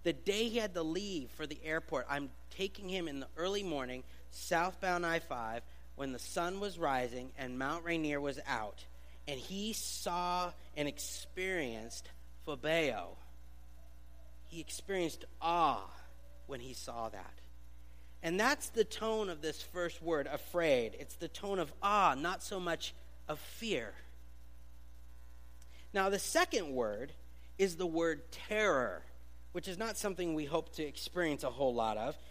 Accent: American